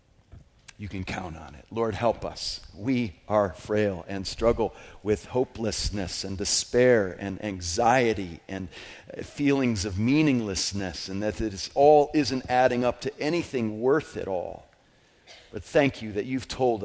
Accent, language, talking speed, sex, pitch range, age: American, English, 145 wpm, male, 90-120 Hz, 40-59